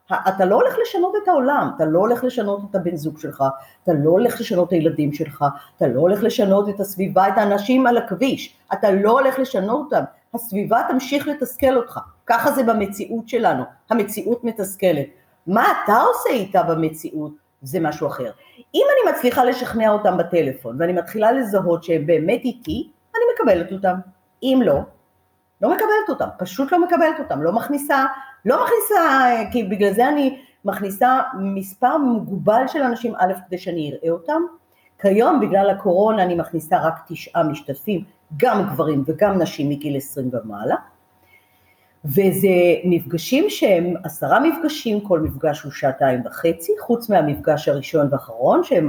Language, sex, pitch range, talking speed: Hebrew, female, 170-255 Hz, 150 wpm